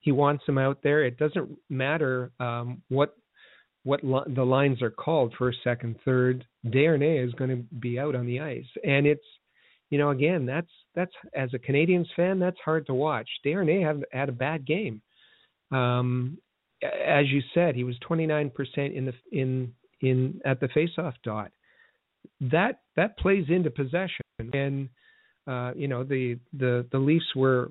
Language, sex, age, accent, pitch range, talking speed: English, male, 50-69, American, 125-150 Hz, 170 wpm